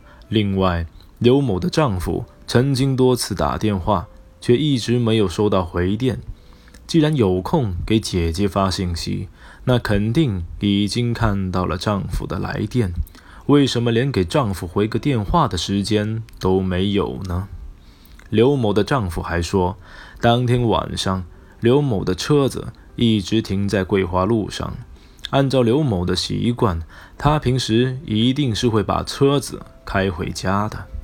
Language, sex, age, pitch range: Chinese, male, 20-39, 90-120 Hz